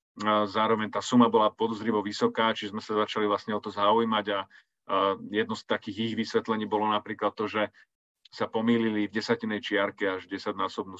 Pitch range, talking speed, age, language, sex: 100-115 Hz, 170 wpm, 40-59, Slovak, male